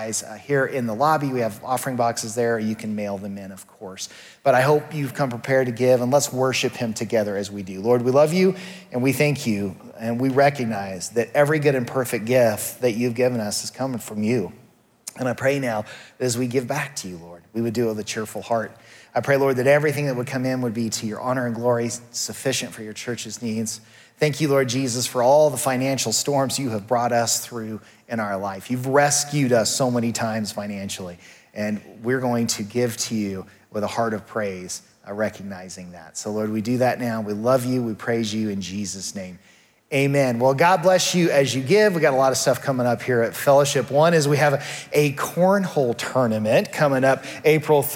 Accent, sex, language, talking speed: American, male, English, 225 wpm